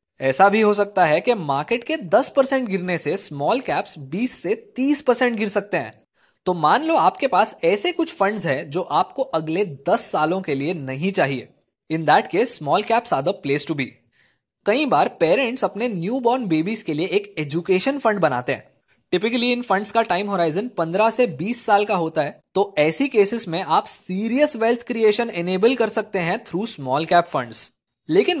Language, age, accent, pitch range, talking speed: Hindi, 20-39, native, 160-230 Hz, 190 wpm